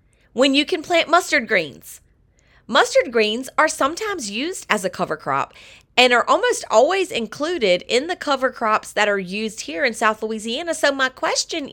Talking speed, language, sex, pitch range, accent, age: 175 wpm, English, female, 200-295 Hz, American, 30-49